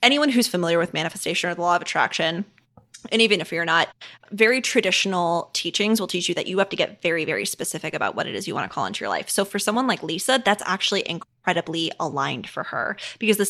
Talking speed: 235 wpm